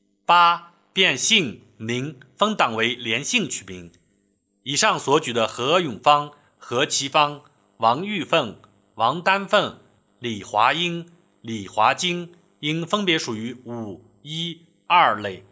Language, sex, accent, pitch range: Chinese, male, native, 105-175 Hz